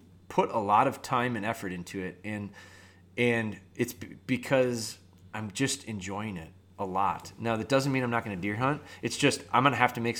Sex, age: male, 20-39